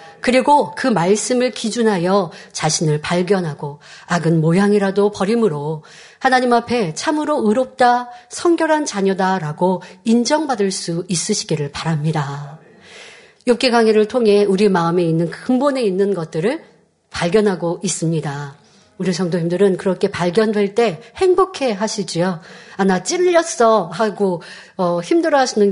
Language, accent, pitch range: Korean, native, 185-240 Hz